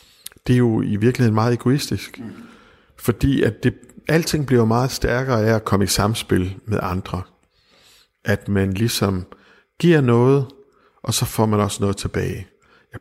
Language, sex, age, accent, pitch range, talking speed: Danish, male, 60-79, native, 100-125 Hz, 155 wpm